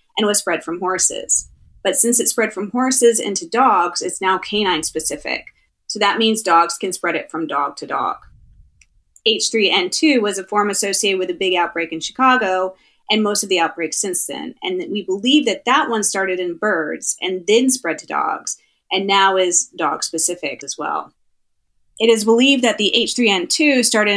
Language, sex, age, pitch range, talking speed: English, female, 30-49, 175-220 Hz, 185 wpm